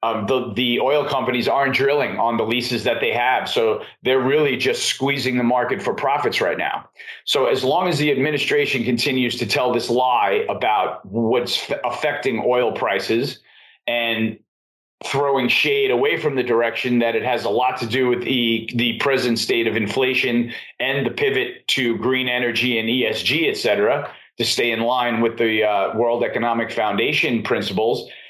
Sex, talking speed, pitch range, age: male, 175 wpm, 120-150 Hz, 40-59